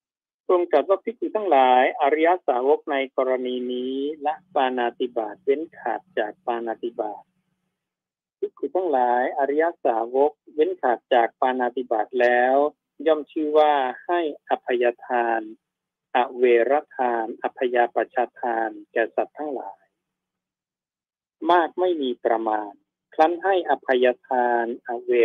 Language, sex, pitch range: Thai, male, 115-155 Hz